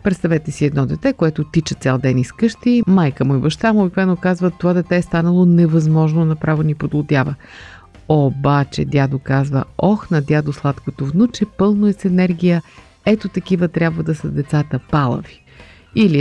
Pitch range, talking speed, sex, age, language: 150-185 Hz, 165 wpm, female, 50-69, Bulgarian